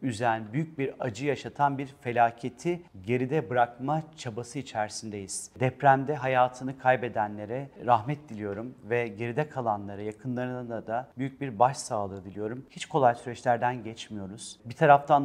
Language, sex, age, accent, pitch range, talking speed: Turkish, male, 40-59, native, 125-145 Hz, 120 wpm